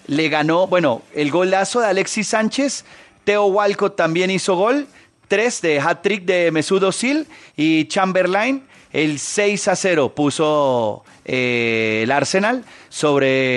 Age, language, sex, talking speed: 30-49, Spanish, male, 135 wpm